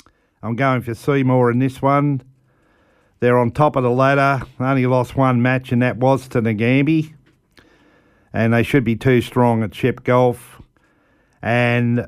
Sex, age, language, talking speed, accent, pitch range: male, 50-69, English, 160 wpm, Australian, 115-135 Hz